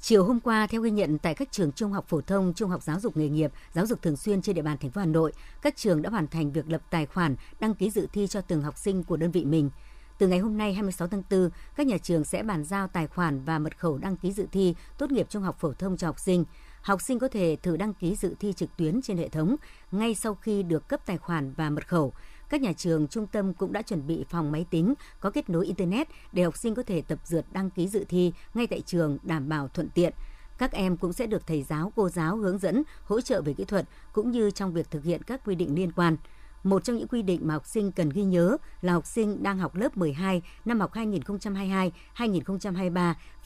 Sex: male